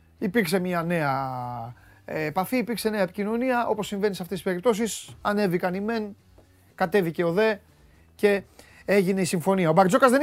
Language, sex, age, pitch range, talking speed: Greek, male, 30-49, 140-220 Hz, 155 wpm